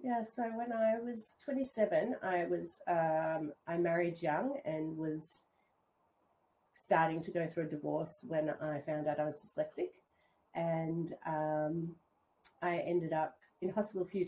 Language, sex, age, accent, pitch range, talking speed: English, female, 40-59, Australian, 145-170 Hz, 155 wpm